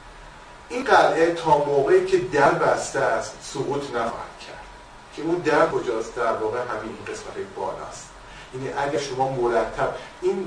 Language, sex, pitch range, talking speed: Persian, male, 125-165 Hz, 140 wpm